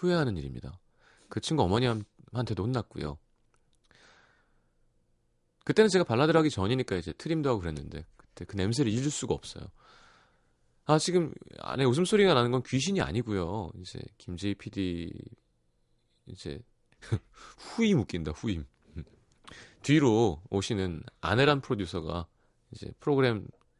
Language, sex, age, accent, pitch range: Korean, male, 30-49, native, 90-145 Hz